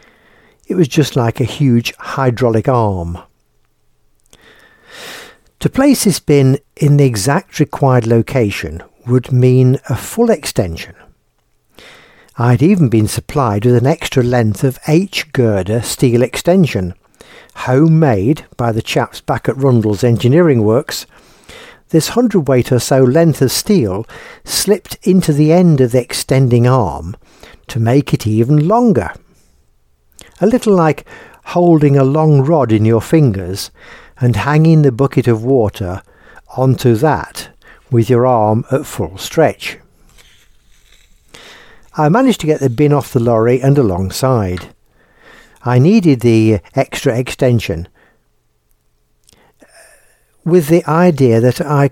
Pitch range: 110-150 Hz